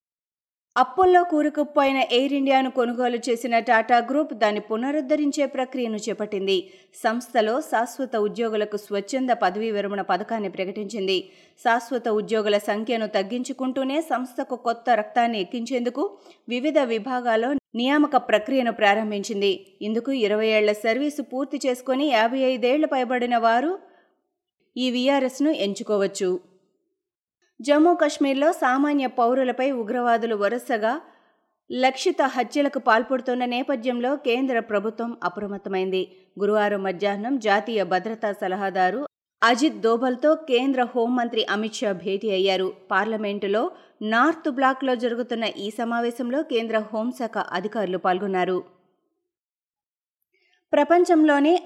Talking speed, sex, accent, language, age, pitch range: 95 wpm, female, native, Telugu, 20-39, 215-280 Hz